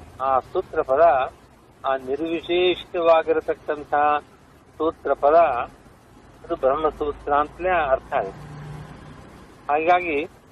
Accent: native